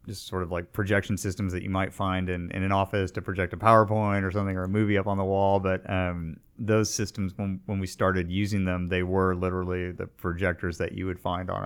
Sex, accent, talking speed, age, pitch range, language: male, American, 240 wpm, 30-49, 90-105 Hz, English